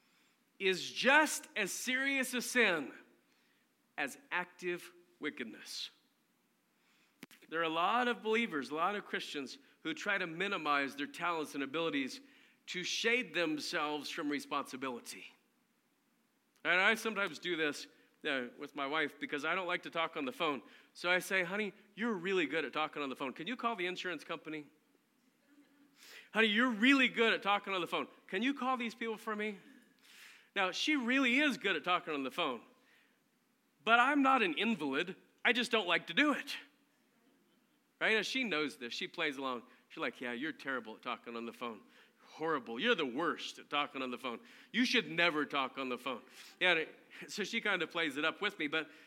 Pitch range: 170-255 Hz